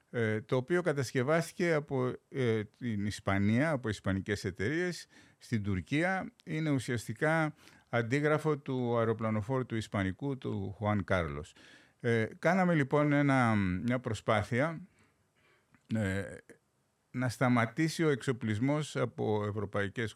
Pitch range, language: 100-135 Hz, Greek